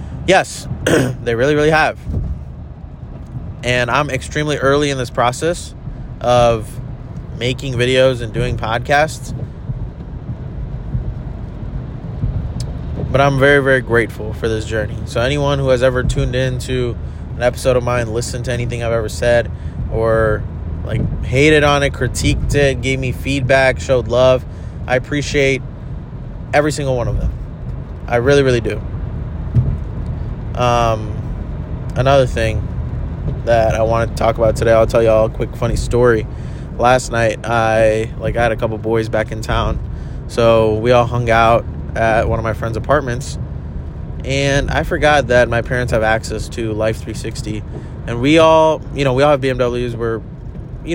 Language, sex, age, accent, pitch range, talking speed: English, male, 20-39, American, 110-130 Hz, 155 wpm